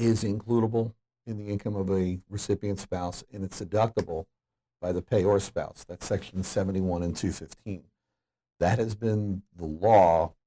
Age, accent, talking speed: 50-69, American, 155 wpm